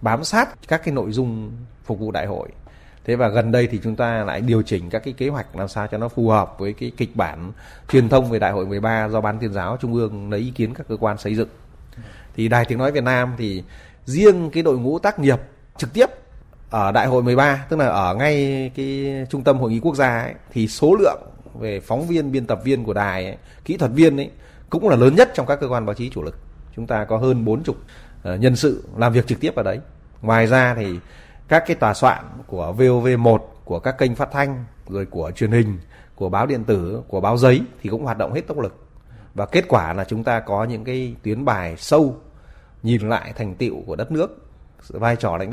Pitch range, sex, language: 105-130 Hz, male, Vietnamese